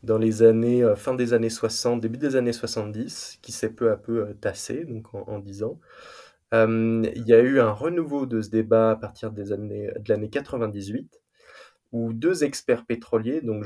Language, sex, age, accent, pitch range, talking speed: French, male, 20-39, French, 110-125 Hz, 195 wpm